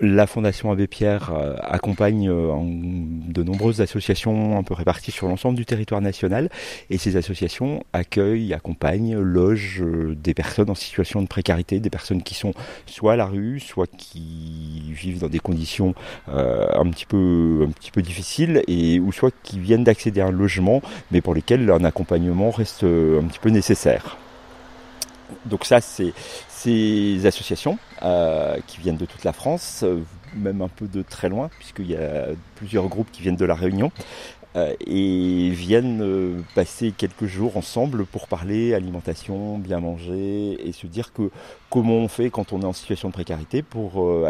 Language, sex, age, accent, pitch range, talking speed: French, male, 40-59, French, 90-105 Hz, 170 wpm